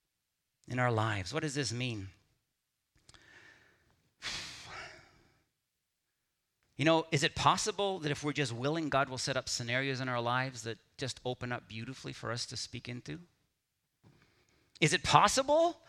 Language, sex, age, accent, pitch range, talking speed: English, male, 40-59, American, 130-185 Hz, 145 wpm